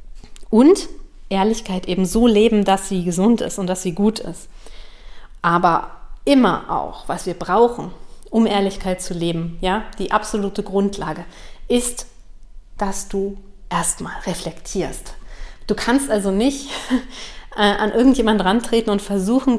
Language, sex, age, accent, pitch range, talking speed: German, female, 30-49, German, 185-225 Hz, 130 wpm